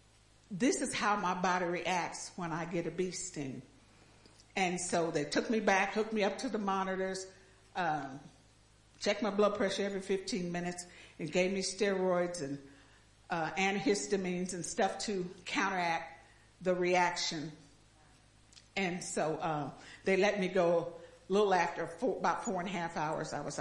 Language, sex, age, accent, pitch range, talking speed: English, female, 50-69, American, 150-220 Hz, 160 wpm